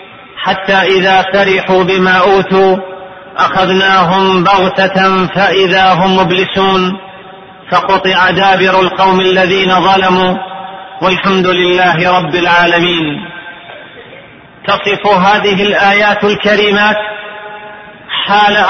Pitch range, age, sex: 190-225 Hz, 40-59, male